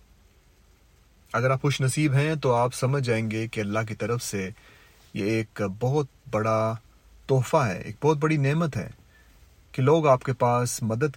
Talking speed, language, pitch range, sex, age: 170 wpm, Urdu, 90-135 Hz, male, 30-49